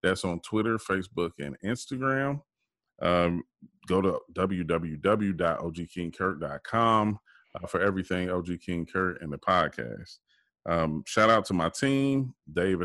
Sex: male